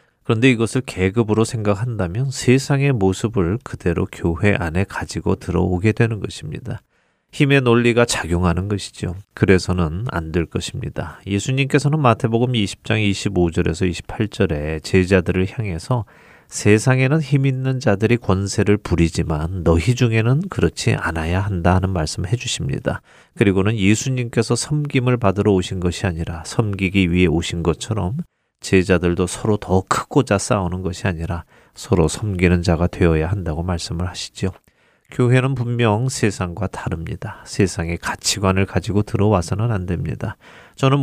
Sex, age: male, 30-49